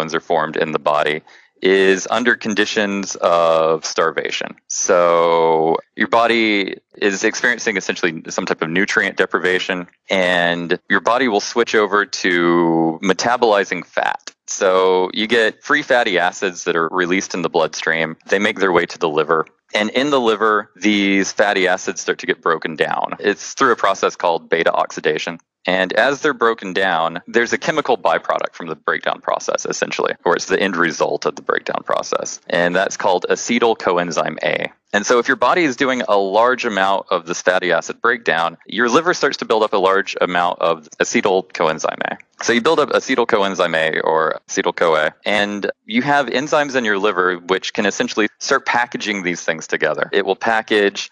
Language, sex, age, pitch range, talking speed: English, male, 20-39, 85-110 Hz, 180 wpm